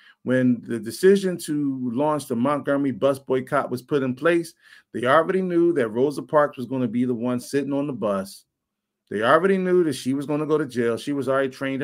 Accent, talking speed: American, 225 wpm